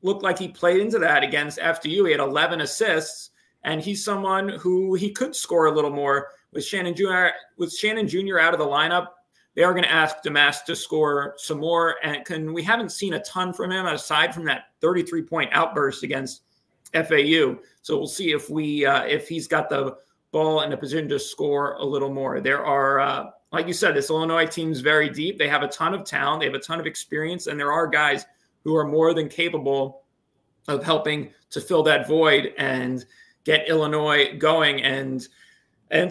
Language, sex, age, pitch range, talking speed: English, male, 30-49, 150-185 Hz, 205 wpm